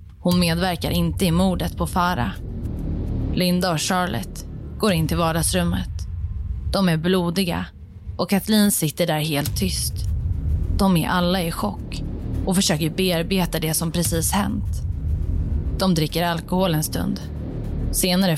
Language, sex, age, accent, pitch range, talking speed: Swedish, female, 20-39, native, 145-185 Hz, 135 wpm